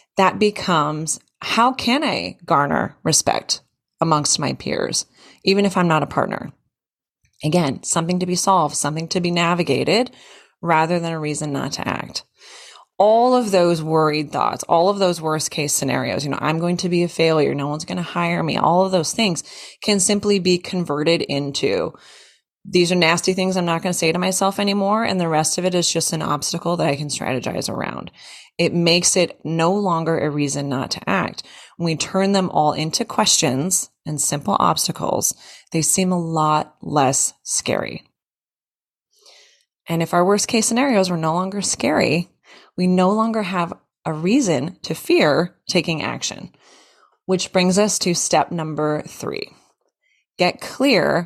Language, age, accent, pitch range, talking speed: English, 20-39, American, 155-195 Hz, 170 wpm